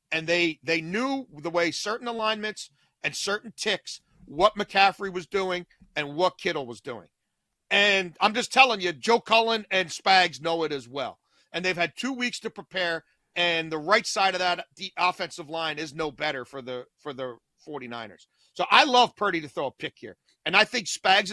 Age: 40-59